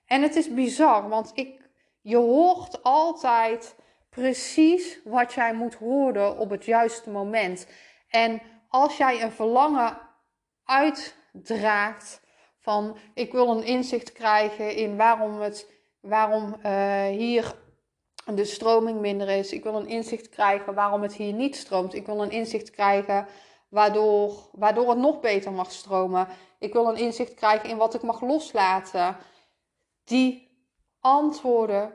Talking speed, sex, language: 135 wpm, female, Dutch